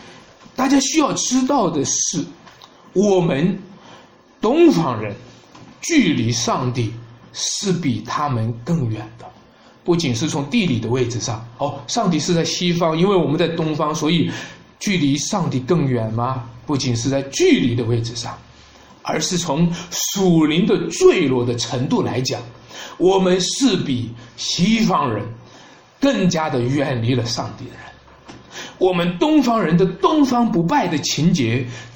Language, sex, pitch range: Chinese, male, 120-180 Hz